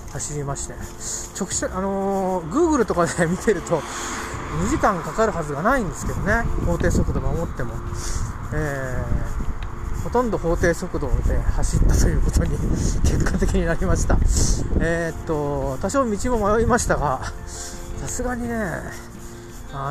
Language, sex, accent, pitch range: Japanese, male, native, 115-190 Hz